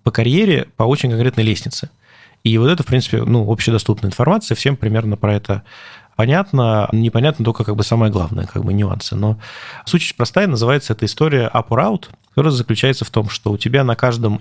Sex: male